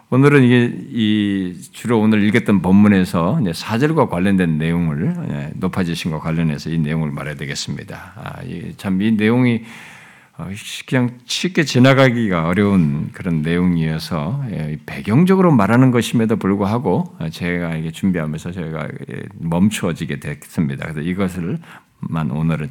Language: Korean